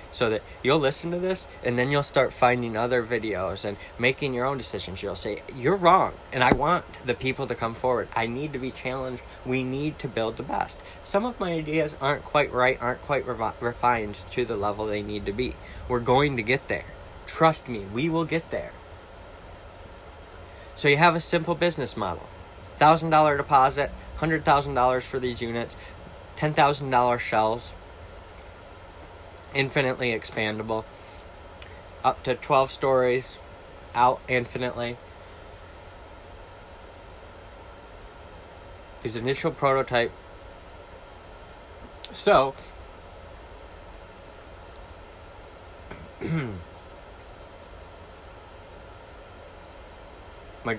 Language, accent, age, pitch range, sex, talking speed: English, American, 20-39, 95-130 Hz, male, 115 wpm